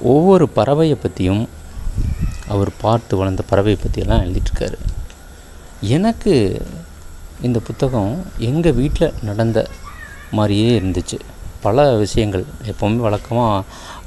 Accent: native